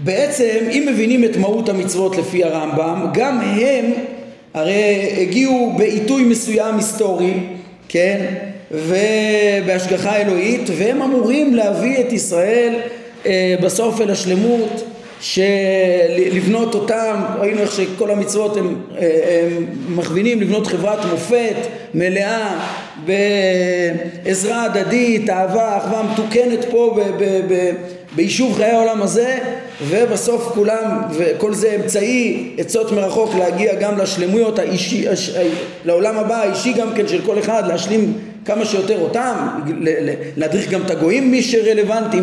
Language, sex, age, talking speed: Hebrew, male, 50-69, 120 wpm